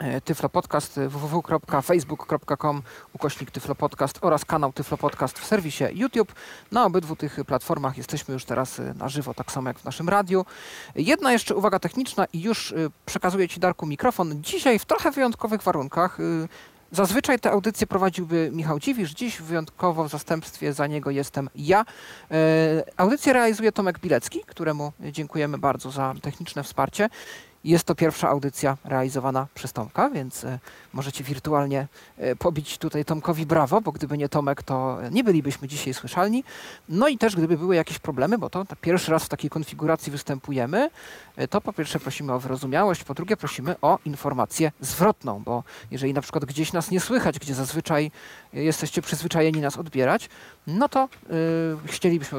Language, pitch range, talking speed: Polish, 140-180 Hz, 150 wpm